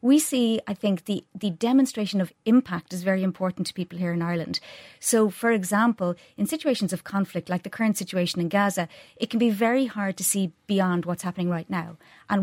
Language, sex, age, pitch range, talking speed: English, female, 30-49, 180-210 Hz, 210 wpm